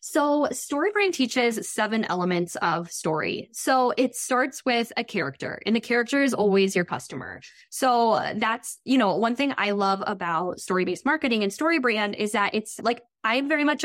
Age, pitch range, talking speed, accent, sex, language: 10-29, 200-260 Hz, 185 wpm, American, female, English